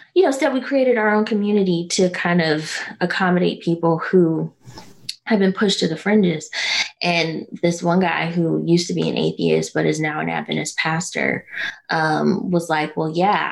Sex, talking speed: female, 180 wpm